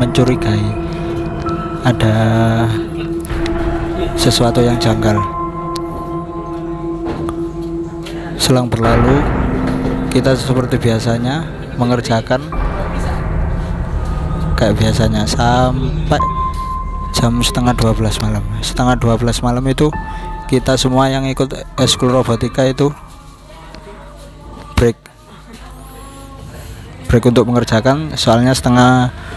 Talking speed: 70 wpm